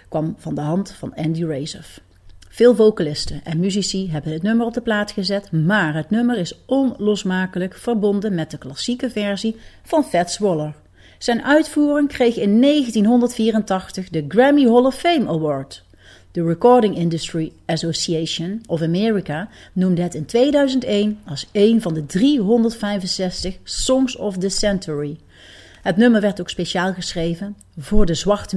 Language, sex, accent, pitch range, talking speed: Dutch, female, Dutch, 160-220 Hz, 145 wpm